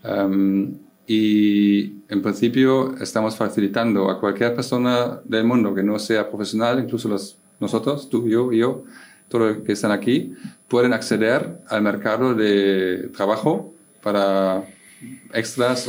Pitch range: 100-120 Hz